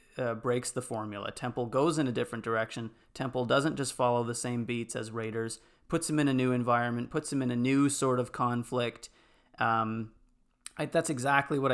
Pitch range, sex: 120-135 Hz, male